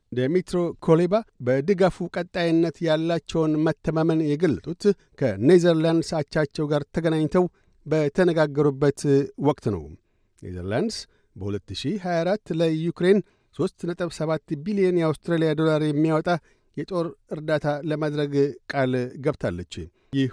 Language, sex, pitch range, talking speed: Amharic, male, 140-170 Hz, 85 wpm